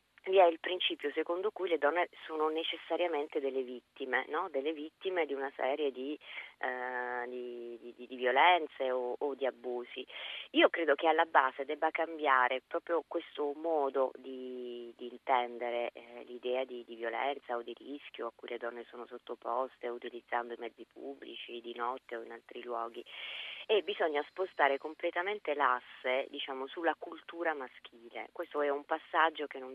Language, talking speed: Italian, 160 wpm